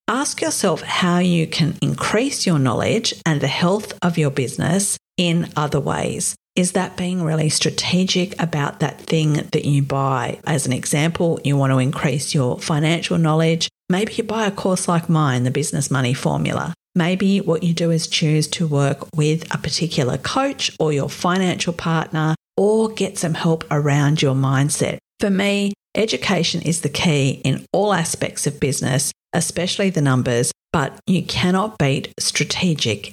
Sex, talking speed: female, 165 wpm